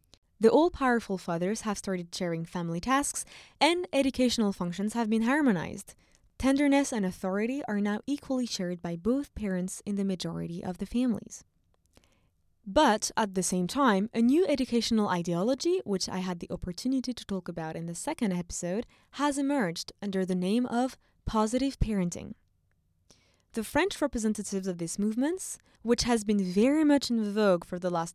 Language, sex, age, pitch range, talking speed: English, female, 20-39, 185-260 Hz, 160 wpm